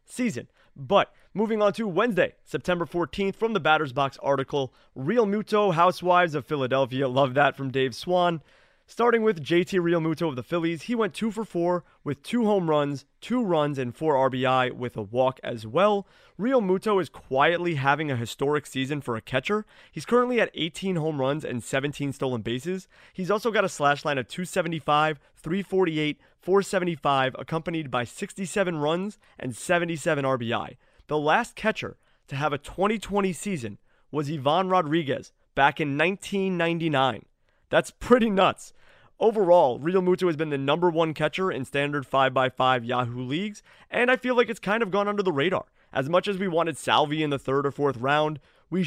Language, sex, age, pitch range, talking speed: English, male, 30-49, 140-190 Hz, 175 wpm